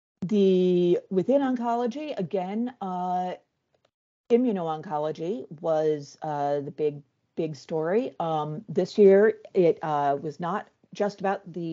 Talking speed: 115 wpm